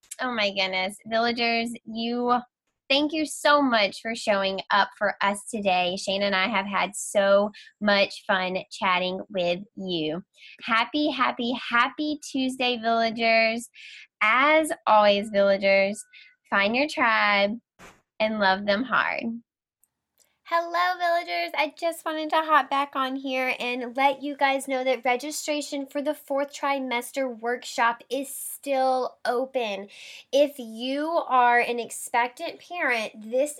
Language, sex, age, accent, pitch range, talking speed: English, female, 10-29, American, 215-280 Hz, 130 wpm